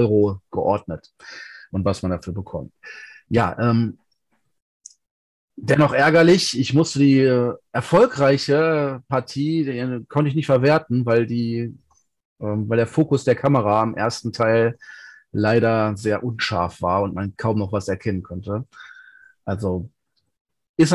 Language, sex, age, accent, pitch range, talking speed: German, male, 40-59, German, 110-150 Hz, 125 wpm